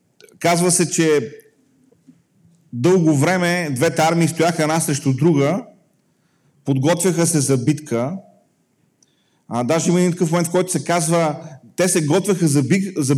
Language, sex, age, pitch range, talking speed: Bulgarian, male, 40-59, 140-175 Hz, 125 wpm